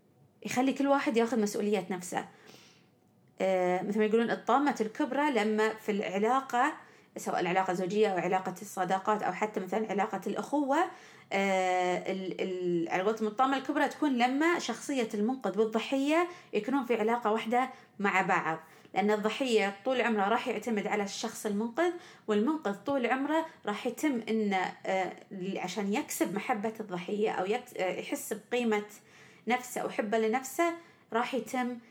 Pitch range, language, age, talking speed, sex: 195-260 Hz, Arabic, 30-49, 130 wpm, female